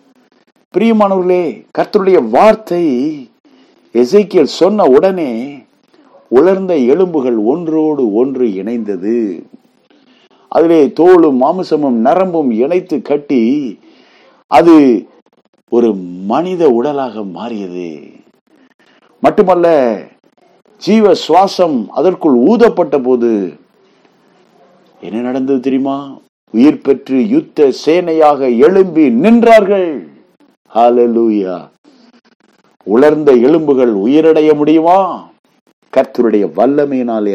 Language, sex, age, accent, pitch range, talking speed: Tamil, male, 50-69, native, 135-215 Hz, 65 wpm